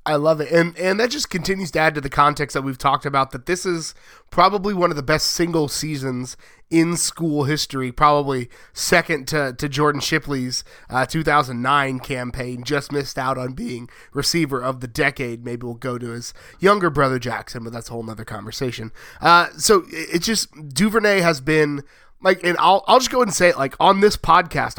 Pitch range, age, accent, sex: 135-170 Hz, 30-49, American, male